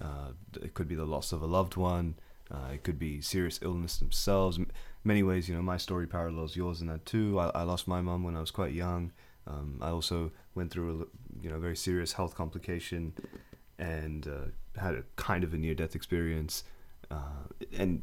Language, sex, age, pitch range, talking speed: English, male, 20-39, 80-95 Hz, 210 wpm